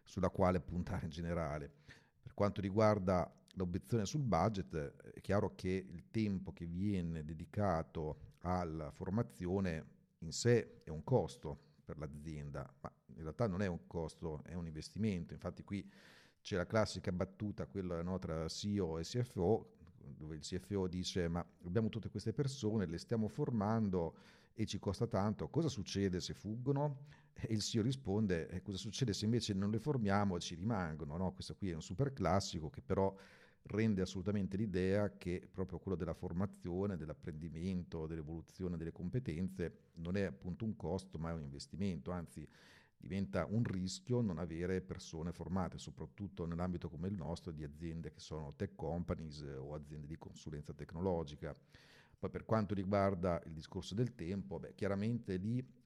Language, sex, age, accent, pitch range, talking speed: Italian, male, 40-59, native, 85-105 Hz, 160 wpm